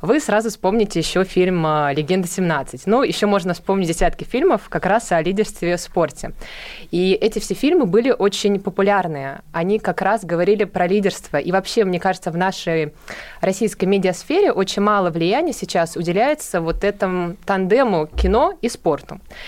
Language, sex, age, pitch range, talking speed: Russian, female, 20-39, 175-220 Hz, 155 wpm